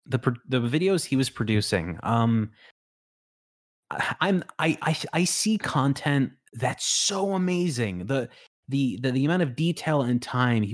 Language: English